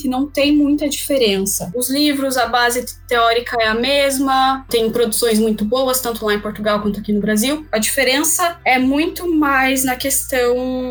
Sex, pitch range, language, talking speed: female, 230-280 Hz, Portuguese, 170 wpm